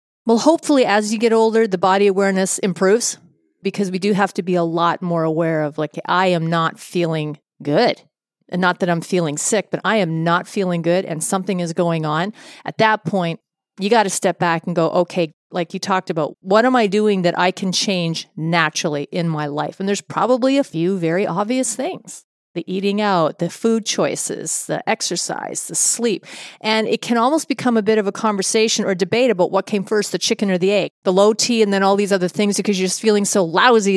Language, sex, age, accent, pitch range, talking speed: English, female, 40-59, American, 180-225 Hz, 225 wpm